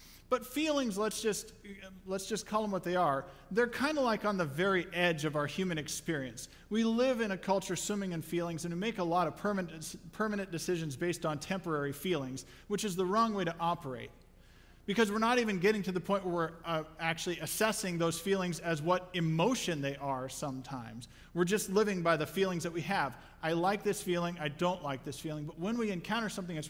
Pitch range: 145-200 Hz